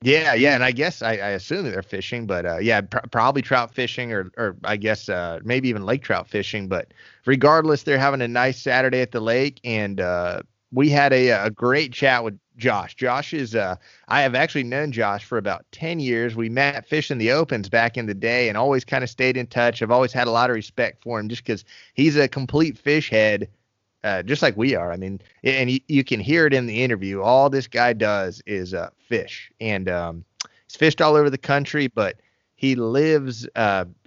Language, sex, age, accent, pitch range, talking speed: English, male, 30-49, American, 110-135 Hz, 225 wpm